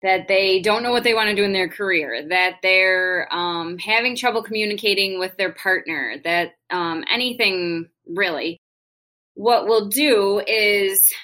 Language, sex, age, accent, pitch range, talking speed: English, female, 20-39, American, 175-220 Hz, 155 wpm